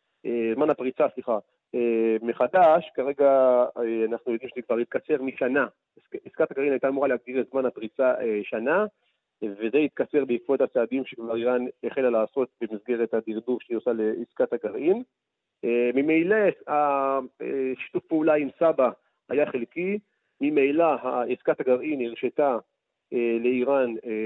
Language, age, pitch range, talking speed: Hebrew, 40-59, 120-155 Hz, 115 wpm